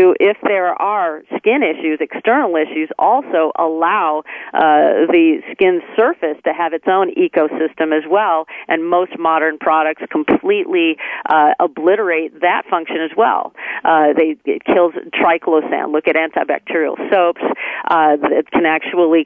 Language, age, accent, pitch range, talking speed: English, 40-59, American, 155-185 Hz, 135 wpm